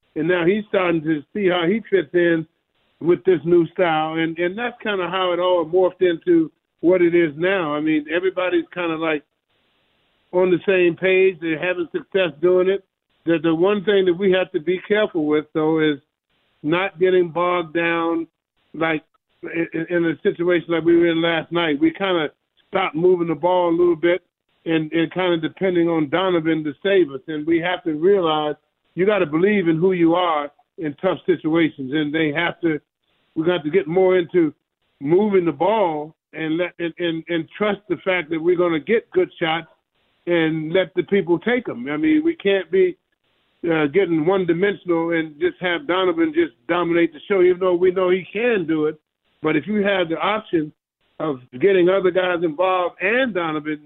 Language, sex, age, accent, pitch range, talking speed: English, male, 50-69, American, 160-185 Hz, 200 wpm